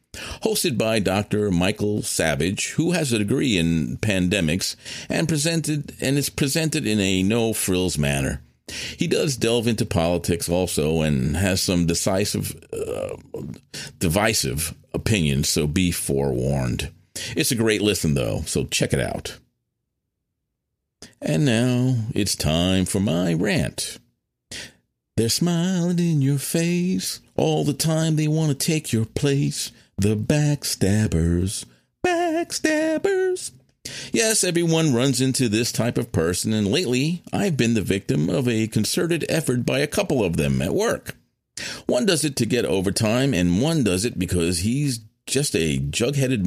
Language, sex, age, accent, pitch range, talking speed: English, male, 50-69, American, 90-150 Hz, 140 wpm